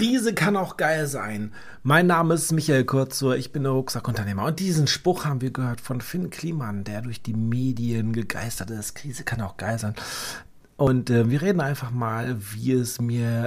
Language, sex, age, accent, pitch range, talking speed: German, male, 40-59, German, 115-145 Hz, 190 wpm